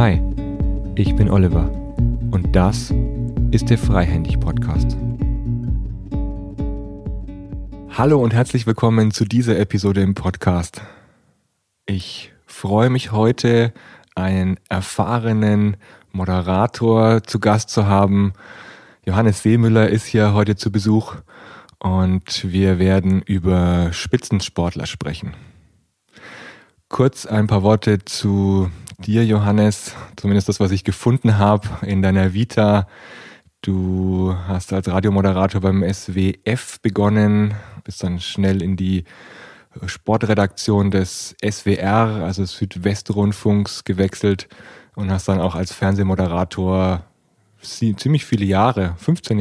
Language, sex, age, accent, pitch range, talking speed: German, male, 30-49, German, 95-110 Hz, 105 wpm